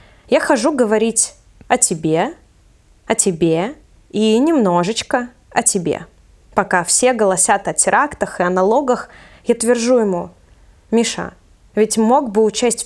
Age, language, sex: 20-39, Russian, female